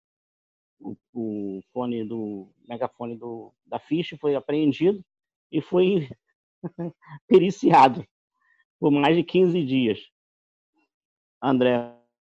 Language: Portuguese